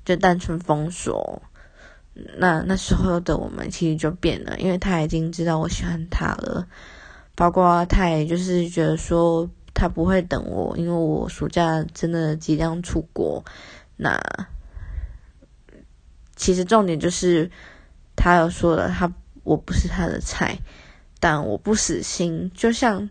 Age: 20-39